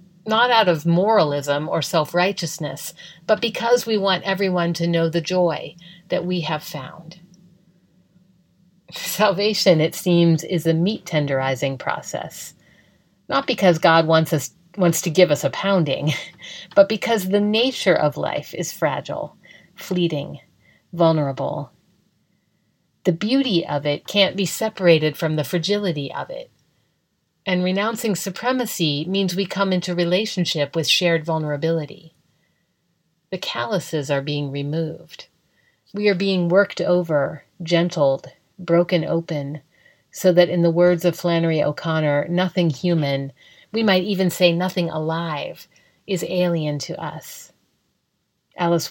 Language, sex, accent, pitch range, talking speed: English, female, American, 160-185 Hz, 130 wpm